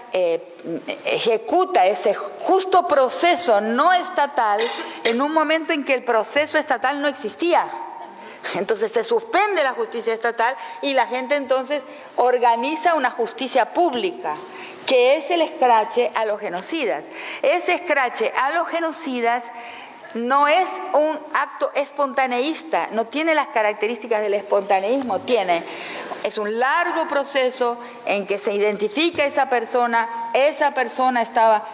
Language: Spanish